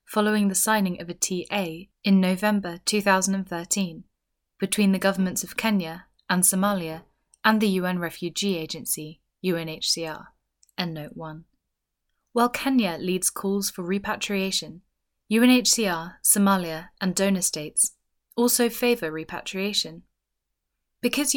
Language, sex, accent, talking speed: English, female, British, 110 wpm